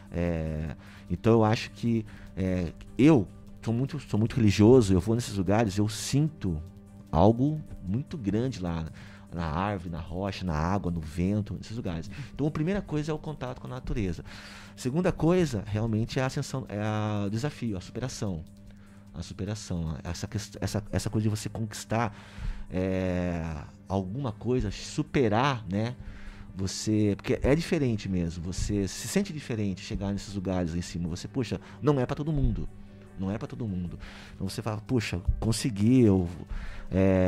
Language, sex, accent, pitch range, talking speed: Portuguese, male, Brazilian, 95-120 Hz, 165 wpm